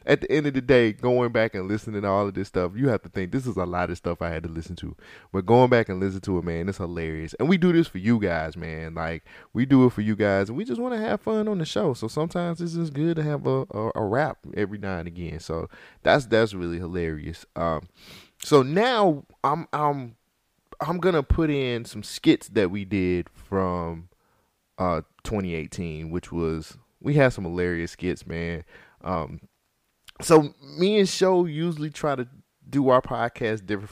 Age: 20-39